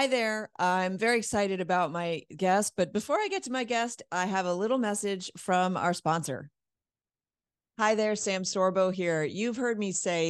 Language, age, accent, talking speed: English, 40-59, American, 185 wpm